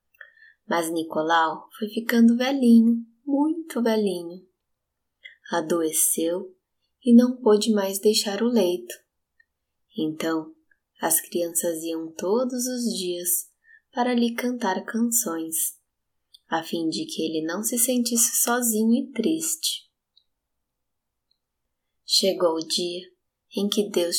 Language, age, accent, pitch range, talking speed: Portuguese, 20-39, Brazilian, 175-240 Hz, 105 wpm